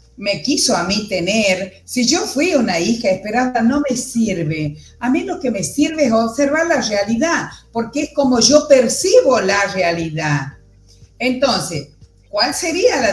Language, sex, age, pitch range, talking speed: Spanish, female, 50-69, 185-255 Hz, 160 wpm